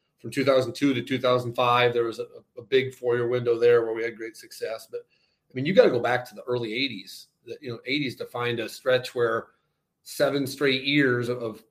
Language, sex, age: English, male, 40-59